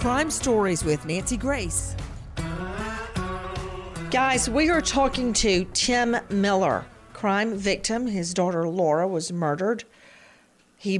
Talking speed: 110 wpm